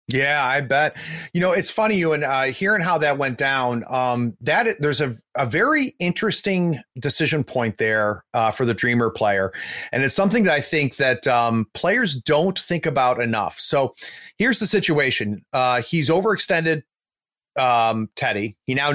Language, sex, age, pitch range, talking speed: English, male, 30-49, 125-175 Hz, 170 wpm